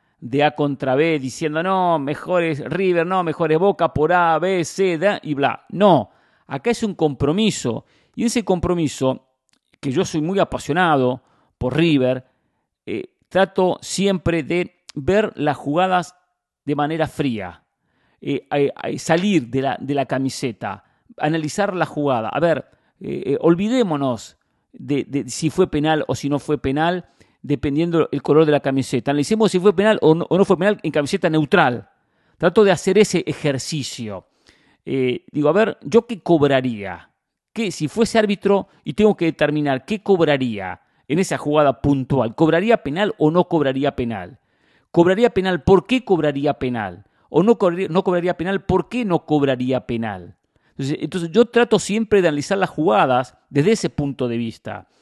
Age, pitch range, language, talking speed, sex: 40-59, 135-185 Hz, English, 160 wpm, male